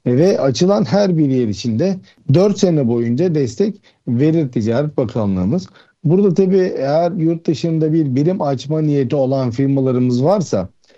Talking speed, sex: 135 wpm, male